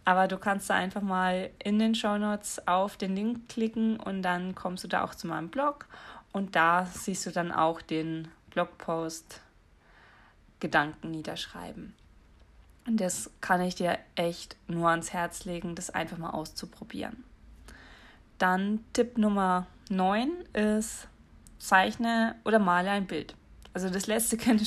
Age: 20-39